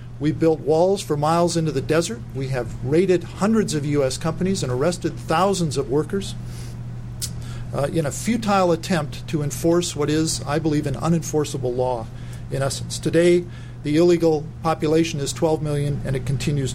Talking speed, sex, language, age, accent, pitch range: 165 wpm, male, English, 50-69, American, 125-165 Hz